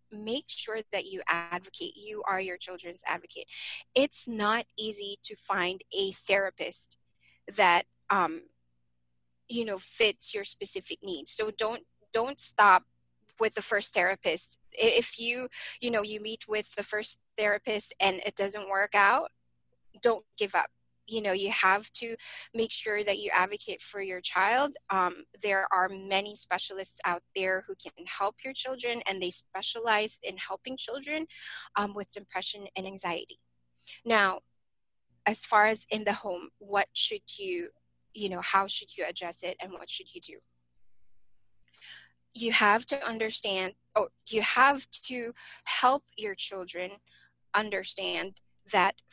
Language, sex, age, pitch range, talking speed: English, female, 20-39, 185-235 Hz, 150 wpm